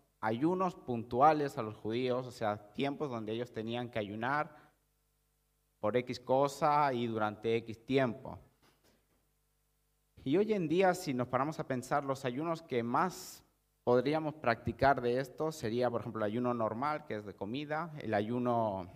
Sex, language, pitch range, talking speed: male, Spanish, 110-140 Hz, 155 wpm